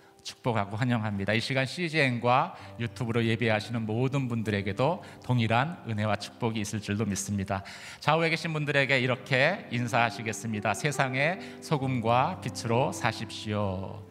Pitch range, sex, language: 105-135 Hz, male, Korean